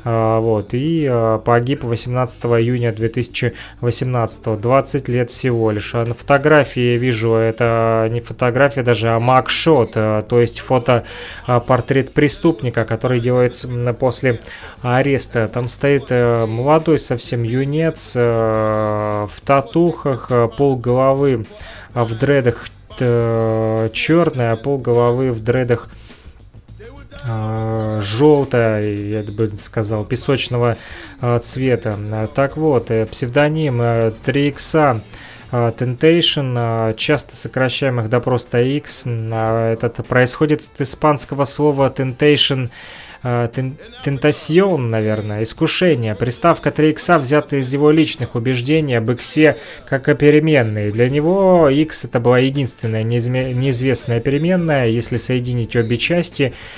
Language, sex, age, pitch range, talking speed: Russian, male, 20-39, 115-140 Hz, 100 wpm